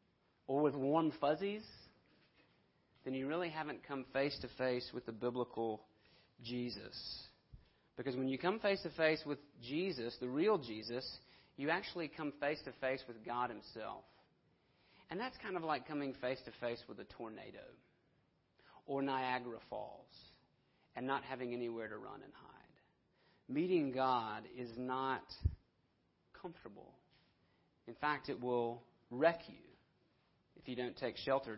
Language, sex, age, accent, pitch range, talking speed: English, male, 40-59, American, 125-160 Hz, 130 wpm